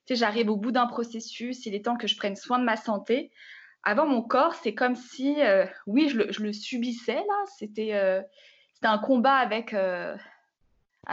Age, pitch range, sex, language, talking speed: 20-39, 210-270 Hz, female, French, 205 wpm